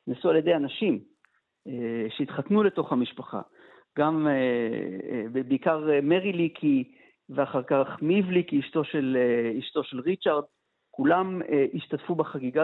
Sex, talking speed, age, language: male, 100 wpm, 50-69, Hebrew